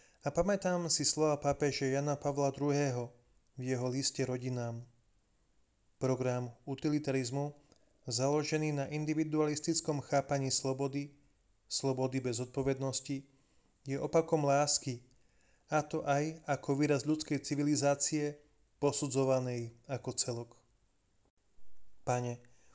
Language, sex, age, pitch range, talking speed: Slovak, male, 30-49, 125-145 Hz, 95 wpm